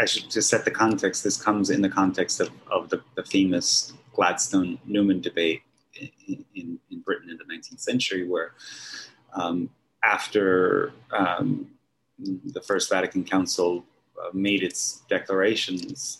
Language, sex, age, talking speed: English, male, 30-49, 135 wpm